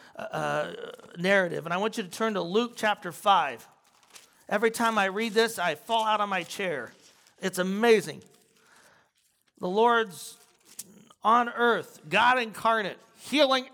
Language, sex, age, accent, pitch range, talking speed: English, male, 40-59, American, 215-275 Hz, 140 wpm